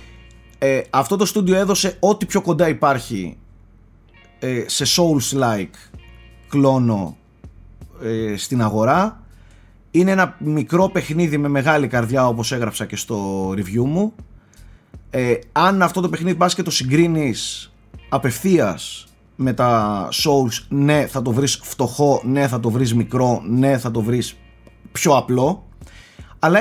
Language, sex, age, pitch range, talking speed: Greek, male, 30-49, 110-165 Hz, 135 wpm